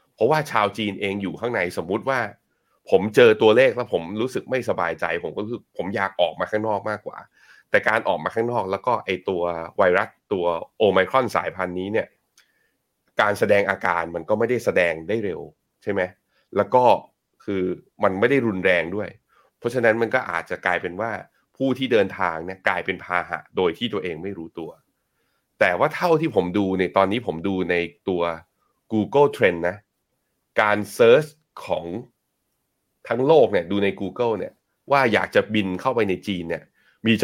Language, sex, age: Thai, male, 20-39